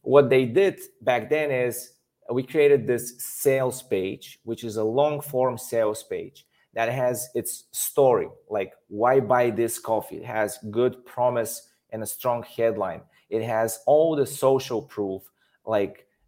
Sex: male